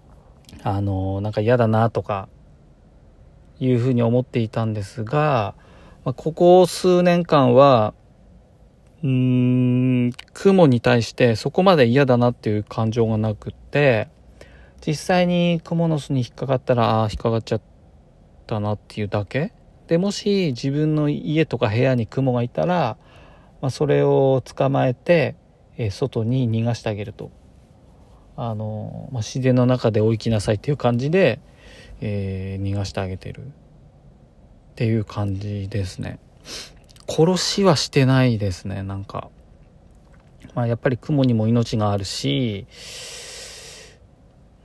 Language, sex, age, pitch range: Japanese, male, 40-59, 110-140 Hz